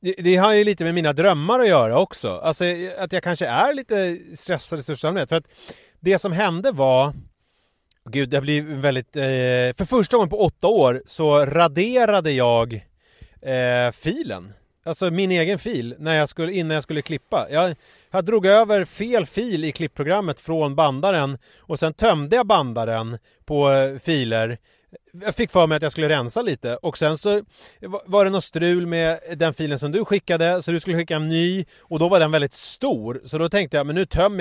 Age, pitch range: 30-49, 135-180 Hz